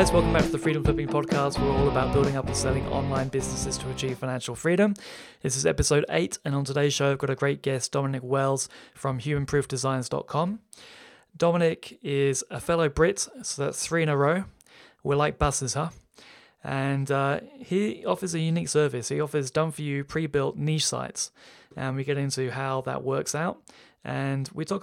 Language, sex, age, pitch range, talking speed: English, male, 20-39, 130-155 Hz, 185 wpm